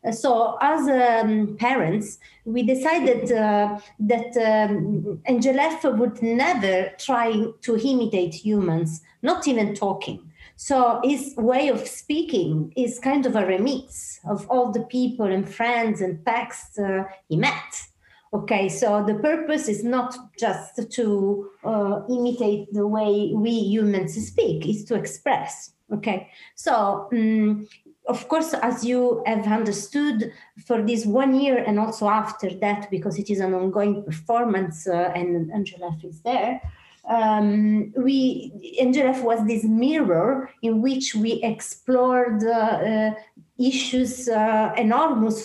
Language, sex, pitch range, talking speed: English, female, 205-250 Hz, 130 wpm